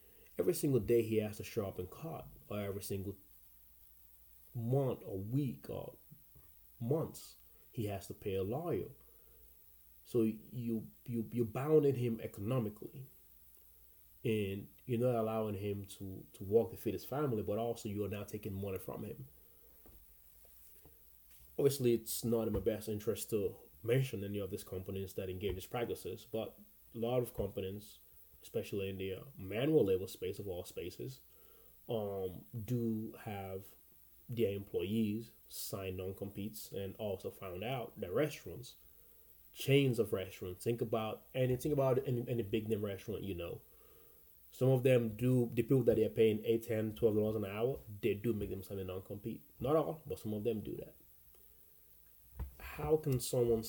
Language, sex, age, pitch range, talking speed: English, male, 30-49, 95-115 Hz, 165 wpm